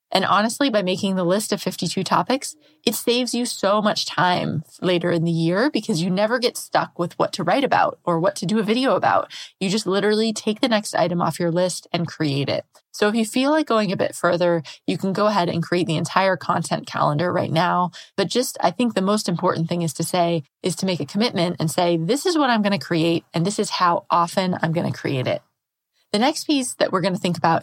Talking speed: 250 wpm